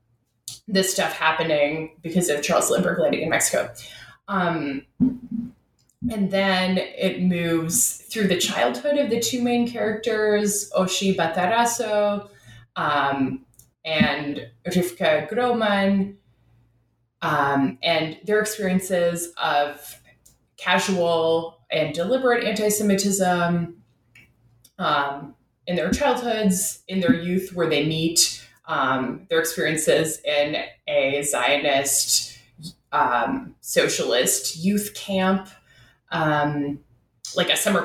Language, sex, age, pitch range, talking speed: English, female, 20-39, 140-200 Hz, 95 wpm